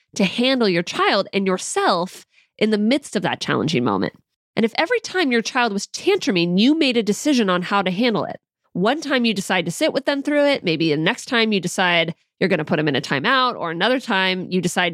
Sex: female